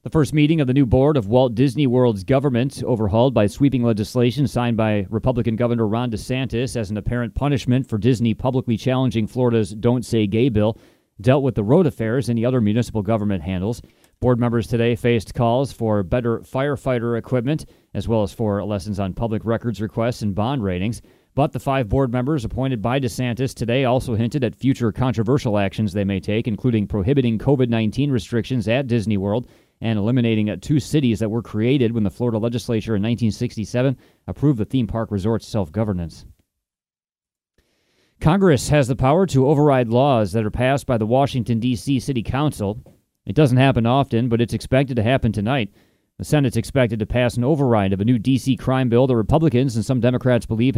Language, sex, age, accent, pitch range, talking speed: English, male, 30-49, American, 110-130 Hz, 185 wpm